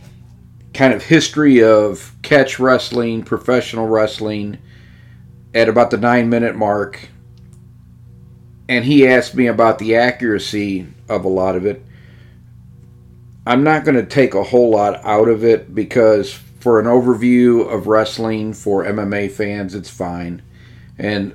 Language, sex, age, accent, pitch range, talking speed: English, male, 40-59, American, 105-125 Hz, 140 wpm